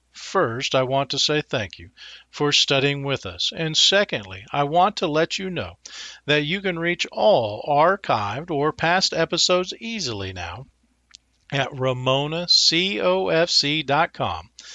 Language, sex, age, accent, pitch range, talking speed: English, male, 50-69, American, 120-170 Hz, 130 wpm